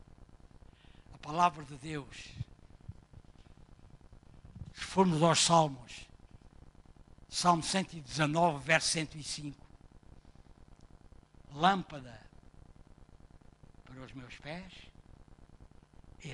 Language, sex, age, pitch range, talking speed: Portuguese, male, 60-79, 90-150 Hz, 60 wpm